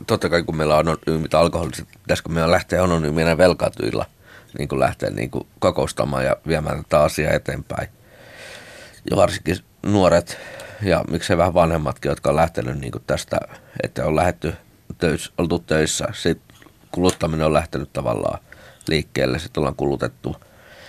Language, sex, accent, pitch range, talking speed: Finnish, male, native, 75-90 Hz, 145 wpm